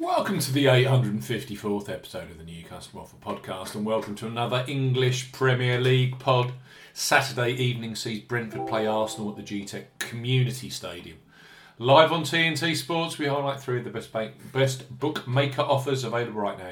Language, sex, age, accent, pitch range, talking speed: English, male, 40-59, British, 110-135 Hz, 170 wpm